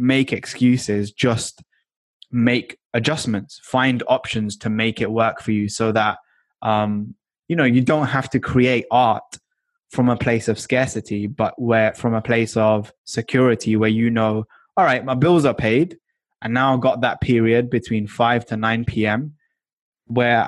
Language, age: English, 10-29